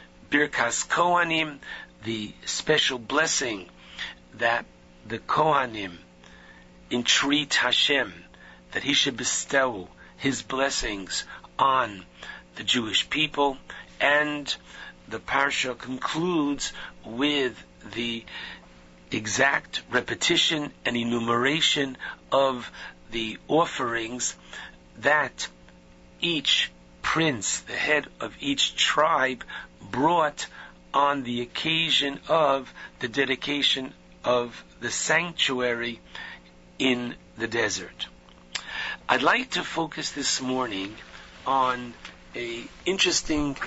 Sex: male